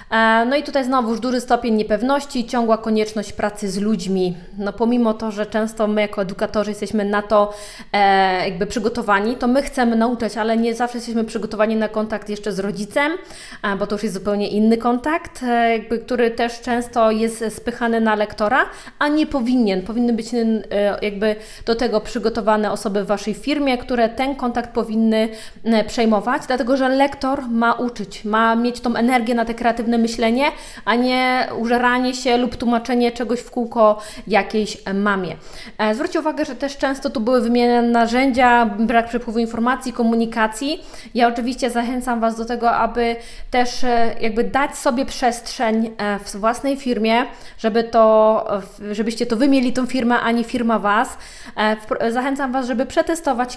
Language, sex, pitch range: Polish, female, 215-250 Hz